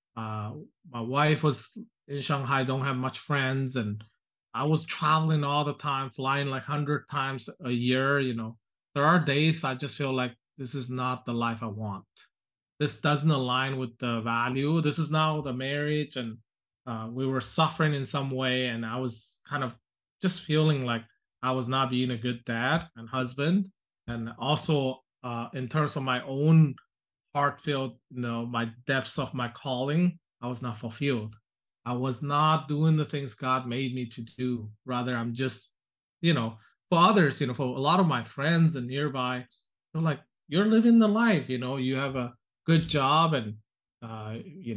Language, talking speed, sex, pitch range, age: English, 185 wpm, male, 120-150 Hz, 30-49